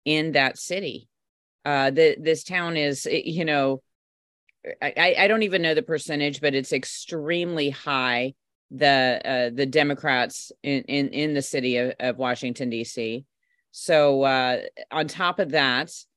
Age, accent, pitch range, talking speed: 40-59, American, 140-165 Hz, 150 wpm